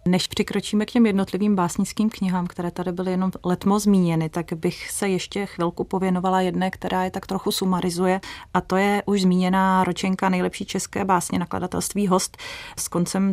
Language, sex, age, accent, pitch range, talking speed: Czech, female, 30-49, native, 170-190 Hz, 170 wpm